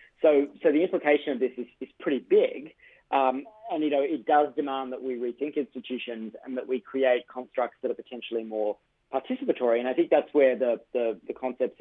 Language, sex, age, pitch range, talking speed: English, male, 40-59, 120-145 Hz, 205 wpm